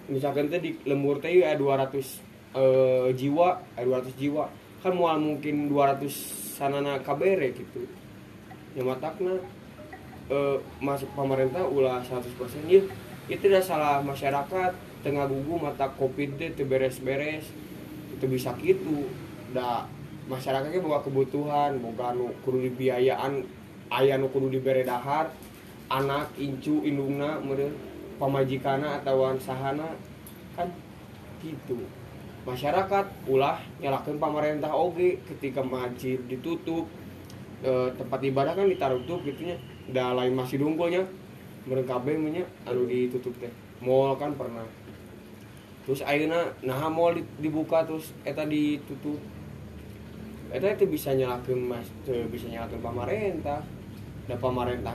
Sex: male